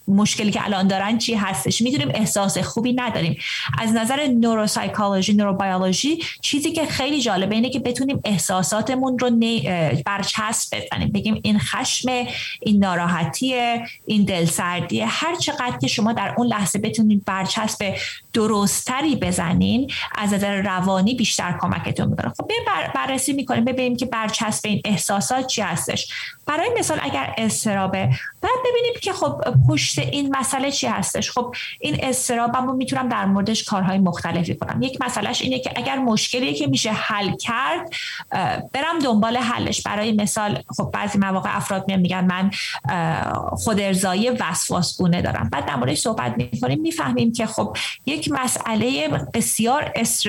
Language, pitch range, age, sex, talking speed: Persian, 195-250 Hz, 30-49, female, 145 wpm